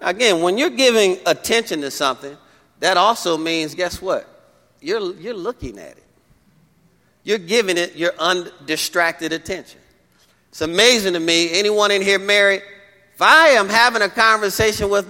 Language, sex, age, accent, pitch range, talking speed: English, male, 40-59, American, 170-250 Hz, 150 wpm